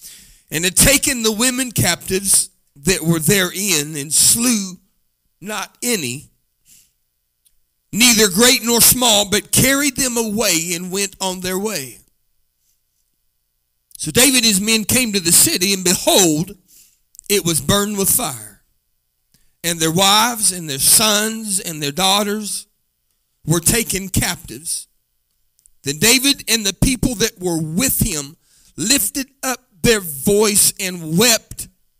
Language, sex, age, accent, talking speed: English, male, 40-59, American, 130 wpm